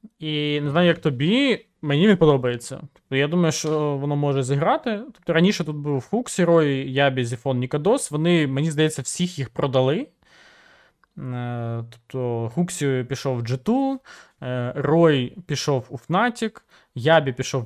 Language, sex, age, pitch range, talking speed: Ukrainian, male, 20-39, 130-170 Hz, 140 wpm